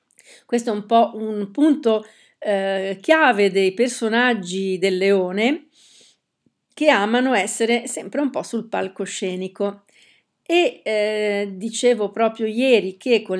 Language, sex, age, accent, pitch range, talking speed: Italian, female, 50-69, native, 200-230 Hz, 120 wpm